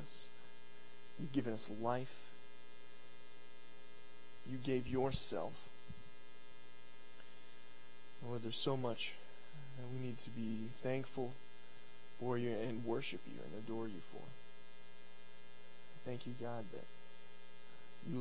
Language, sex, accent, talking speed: English, male, American, 100 wpm